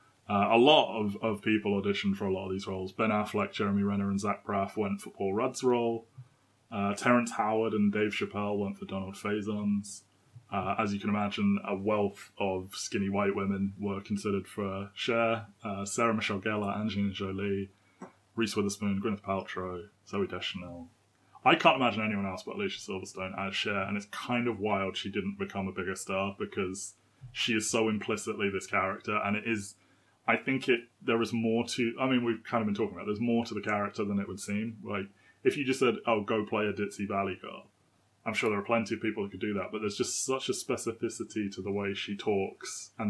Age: 20-39